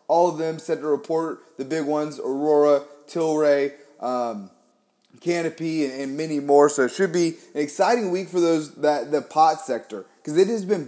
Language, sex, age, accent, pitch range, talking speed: English, male, 30-49, American, 130-170 Hz, 190 wpm